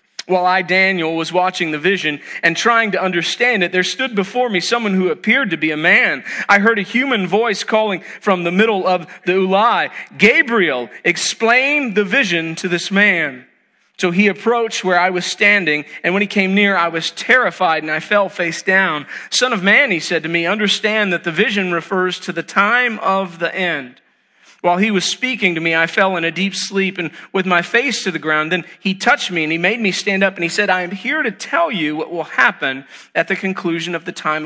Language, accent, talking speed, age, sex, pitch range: English, American, 220 wpm, 40-59, male, 170-210 Hz